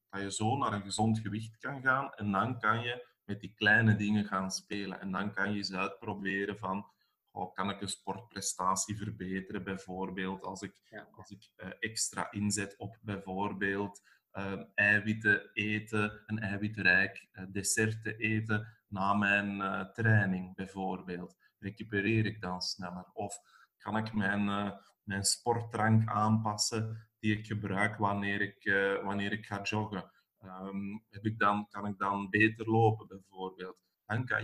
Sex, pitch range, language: male, 95-110 Hz, Dutch